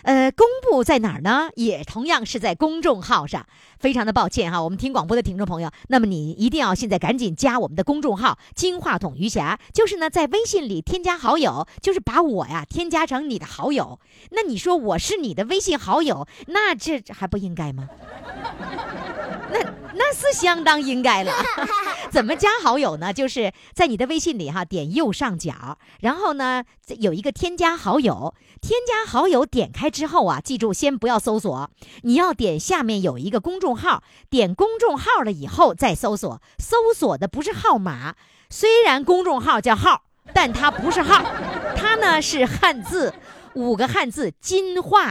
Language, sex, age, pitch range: Chinese, male, 50-69, 225-350 Hz